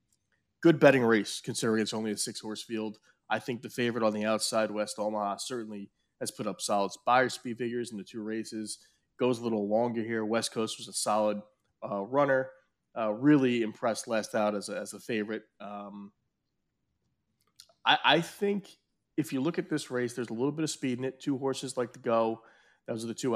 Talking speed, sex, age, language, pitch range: 200 wpm, male, 30-49, English, 105-130 Hz